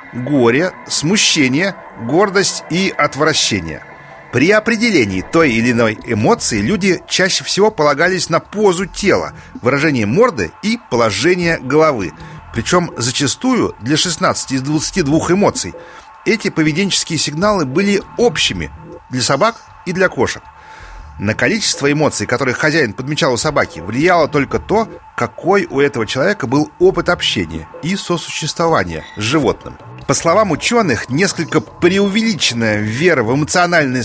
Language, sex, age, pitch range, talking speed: Russian, male, 40-59, 135-190 Hz, 125 wpm